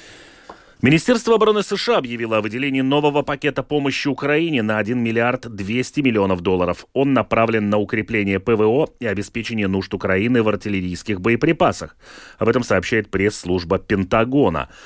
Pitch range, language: 95-135 Hz, Russian